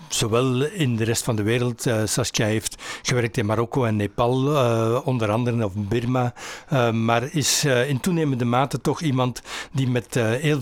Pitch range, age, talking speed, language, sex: 120-150 Hz, 60-79, 160 wpm, Dutch, male